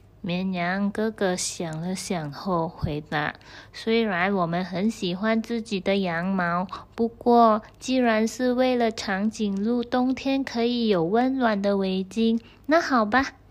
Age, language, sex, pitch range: 20-39, Chinese, female, 190-245 Hz